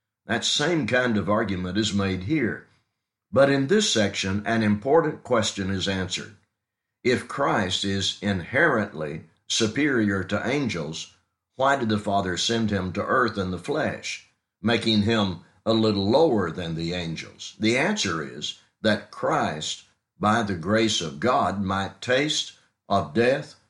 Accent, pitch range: American, 95-115 Hz